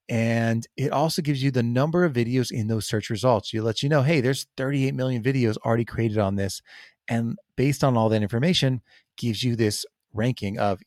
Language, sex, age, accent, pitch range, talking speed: English, male, 30-49, American, 110-140 Hz, 205 wpm